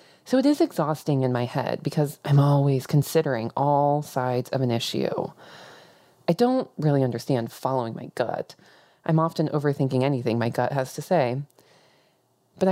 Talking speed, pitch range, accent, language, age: 155 wpm, 135-190 Hz, American, English, 20-39